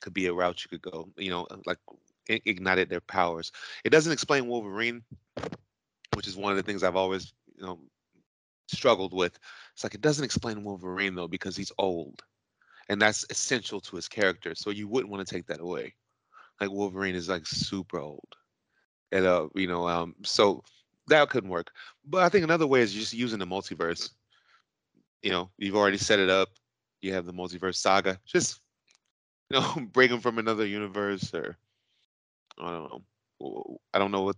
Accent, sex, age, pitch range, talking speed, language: American, male, 30-49, 95-115 Hz, 185 wpm, English